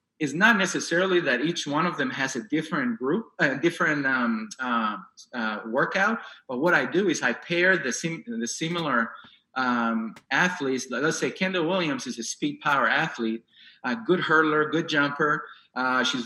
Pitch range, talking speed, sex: 135-180 Hz, 175 wpm, male